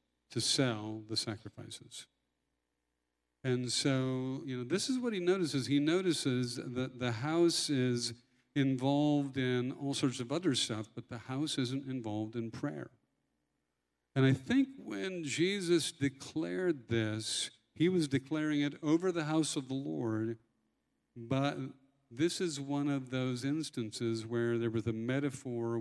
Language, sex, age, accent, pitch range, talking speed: English, male, 50-69, American, 115-145 Hz, 145 wpm